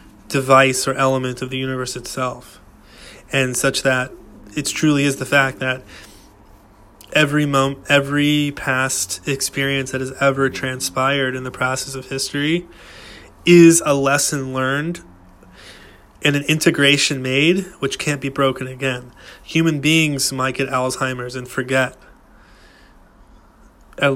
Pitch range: 130-140 Hz